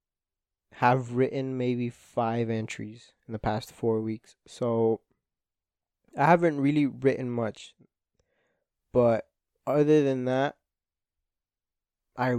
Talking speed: 100 wpm